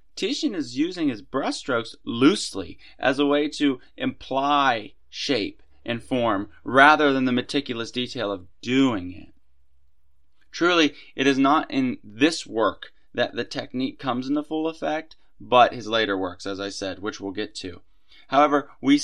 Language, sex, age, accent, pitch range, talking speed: English, male, 20-39, American, 110-155 Hz, 155 wpm